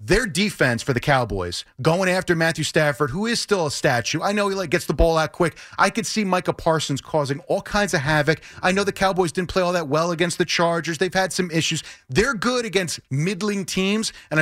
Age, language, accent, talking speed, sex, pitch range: 30-49, English, American, 230 wpm, male, 150-190 Hz